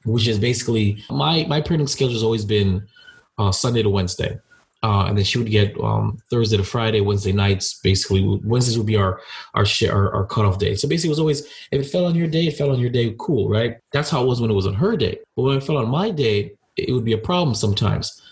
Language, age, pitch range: English, 30-49, 105-135 Hz